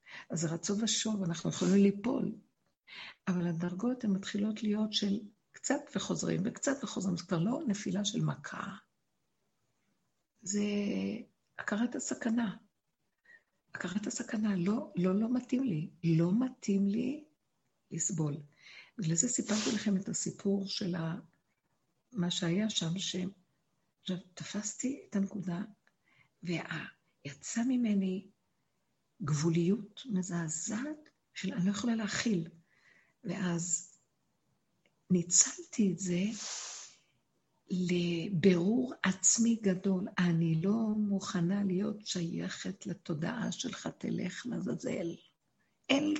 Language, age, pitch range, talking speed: Hebrew, 60-79, 175-215 Hz, 100 wpm